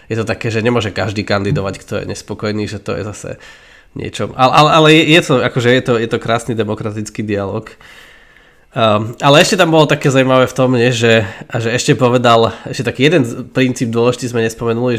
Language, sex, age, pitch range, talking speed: Slovak, male, 20-39, 110-130 Hz, 200 wpm